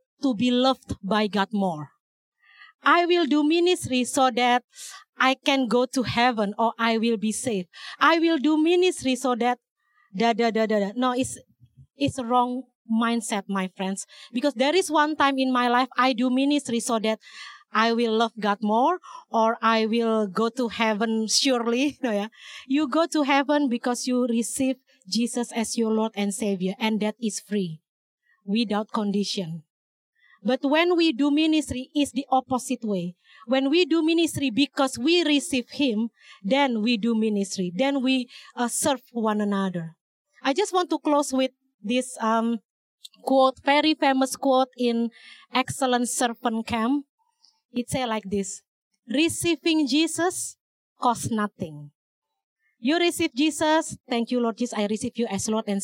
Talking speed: 160 wpm